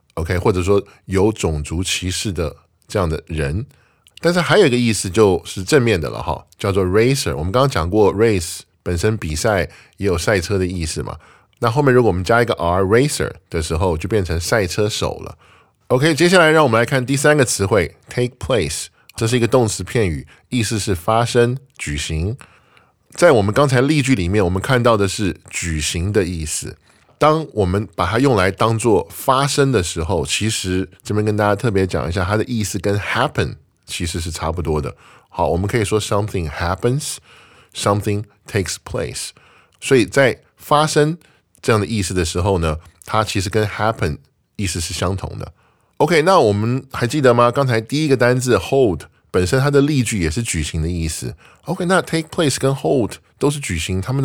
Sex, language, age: male, Chinese, 10-29